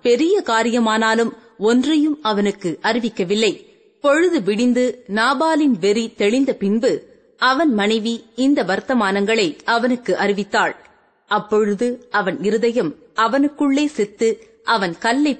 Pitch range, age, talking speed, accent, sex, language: 210-275 Hz, 30-49, 95 wpm, native, female, Tamil